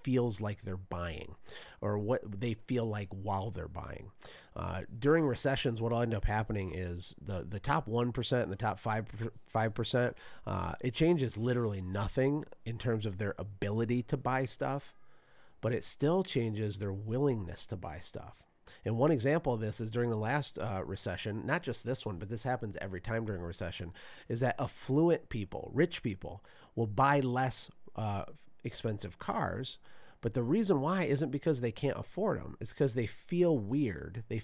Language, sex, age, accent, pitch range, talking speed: English, male, 40-59, American, 100-130 Hz, 185 wpm